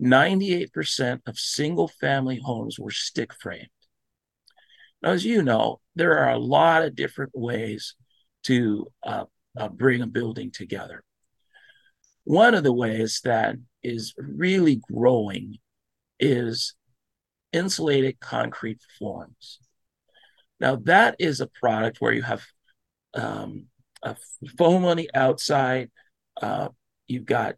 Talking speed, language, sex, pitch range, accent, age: 115 wpm, English, male, 120-160 Hz, American, 40-59